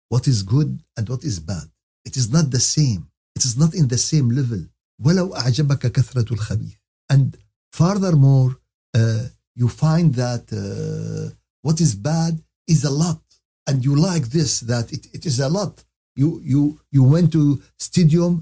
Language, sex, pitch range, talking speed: Arabic, male, 125-160 Hz, 155 wpm